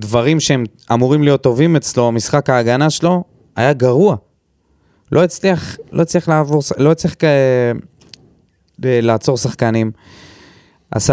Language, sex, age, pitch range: Hebrew, male, 20-39, 110-130 Hz